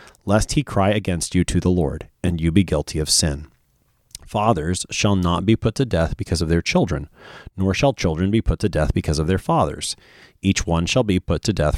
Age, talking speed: 30-49, 220 wpm